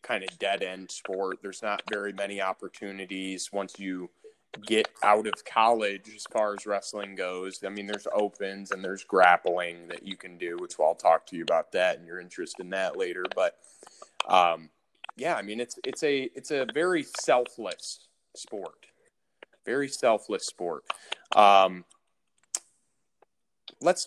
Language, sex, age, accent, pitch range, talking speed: English, male, 30-49, American, 95-125 Hz, 155 wpm